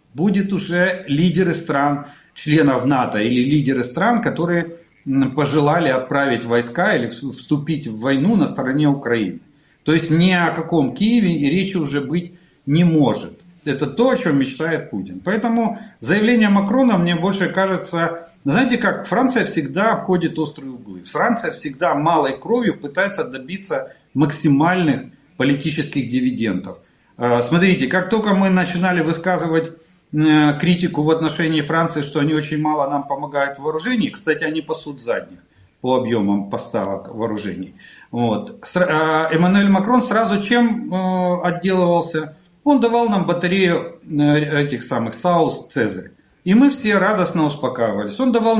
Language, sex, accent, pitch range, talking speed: Russian, male, native, 140-185 Hz, 130 wpm